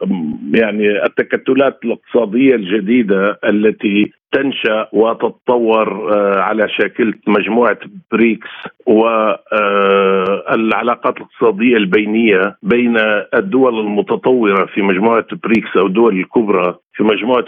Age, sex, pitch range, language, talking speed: 50-69, male, 105-120 Hz, Arabic, 85 wpm